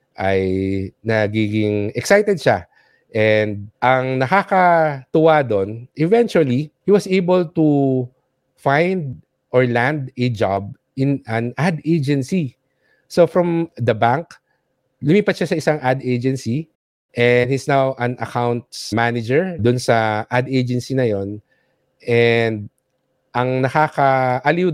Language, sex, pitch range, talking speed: English, male, 115-150 Hz, 115 wpm